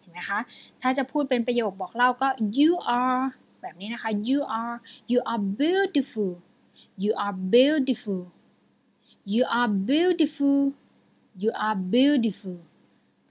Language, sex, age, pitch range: Thai, female, 20-39, 215-275 Hz